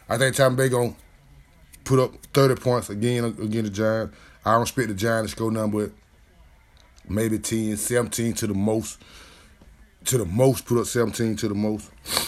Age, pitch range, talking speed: 20-39, 90-125 Hz, 180 wpm